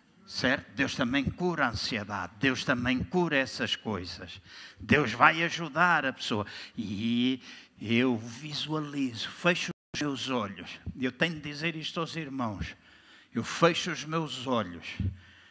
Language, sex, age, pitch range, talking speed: Portuguese, male, 60-79, 110-135 Hz, 130 wpm